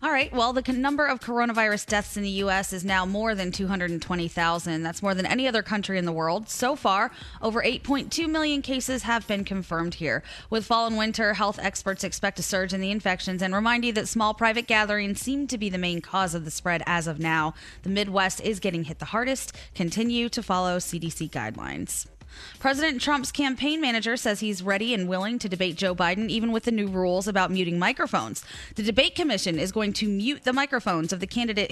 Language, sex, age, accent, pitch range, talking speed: English, female, 20-39, American, 185-235 Hz, 210 wpm